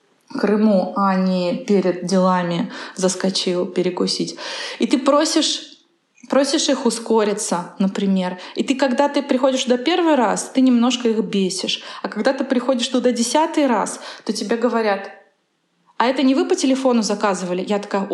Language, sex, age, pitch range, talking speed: Russian, female, 20-39, 195-250 Hz, 150 wpm